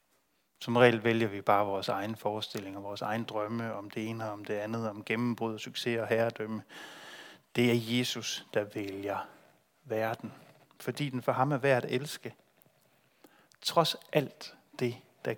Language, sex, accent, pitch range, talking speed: Danish, male, native, 110-135 Hz, 165 wpm